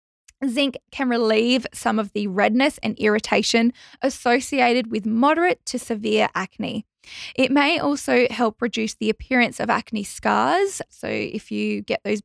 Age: 10-29